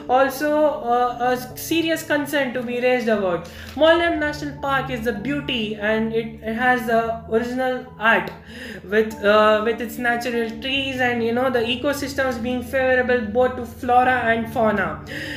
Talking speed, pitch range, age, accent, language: 155 wpm, 220-270 Hz, 20-39, Indian, English